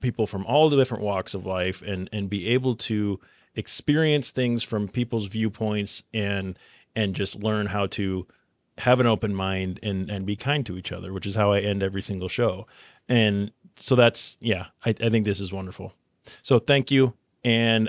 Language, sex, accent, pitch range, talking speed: English, male, American, 100-120 Hz, 190 wpm